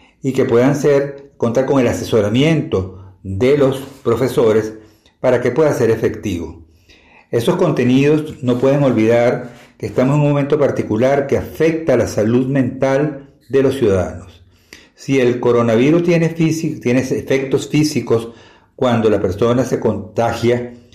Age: 50-69